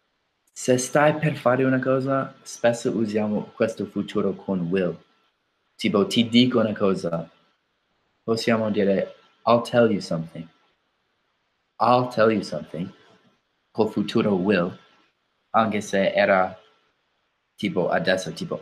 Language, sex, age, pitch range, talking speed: Italian, male, 20-39, 95-120 Hz, 115 wpm